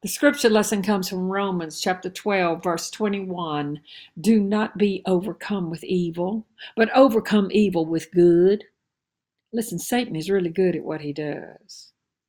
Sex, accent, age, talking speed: female, American, 50-69, 145 wpm